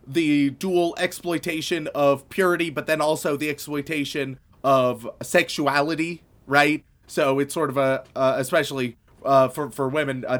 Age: 30-49